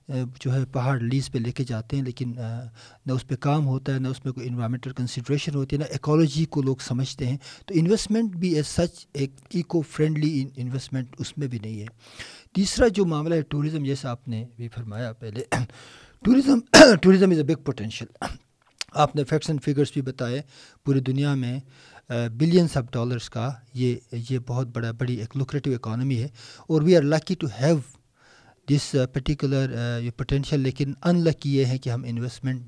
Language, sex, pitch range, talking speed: Urdu, male, 125-155 Hz, 180 wpm